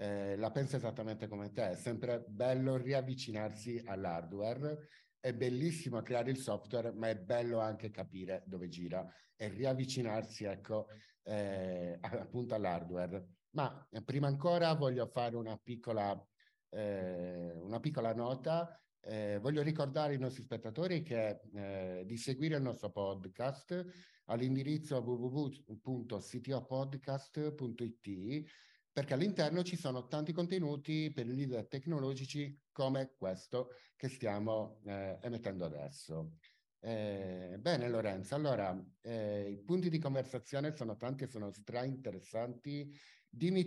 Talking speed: 120 wpm